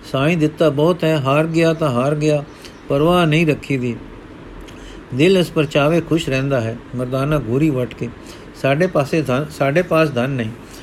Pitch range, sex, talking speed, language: 135-165 Hz, male, 155 wpm, Punjabi